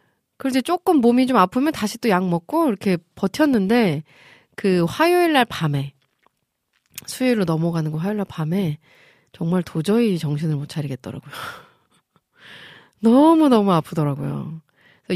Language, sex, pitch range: Korean, female, 155-225 Hz